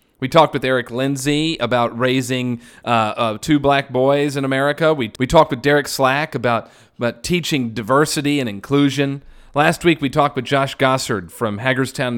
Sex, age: male, 40-59